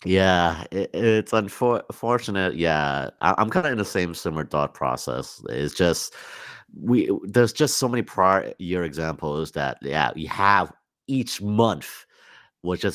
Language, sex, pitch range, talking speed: English, male, 80-115 Hz, 160 wpm